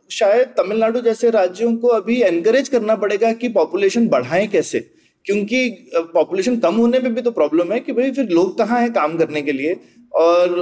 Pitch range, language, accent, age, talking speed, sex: 180-255 Hz, Hindi, native, 30-49, 185 wpm, male